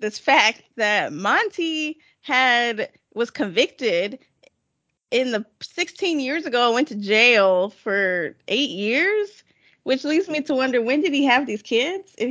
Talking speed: 145 wpm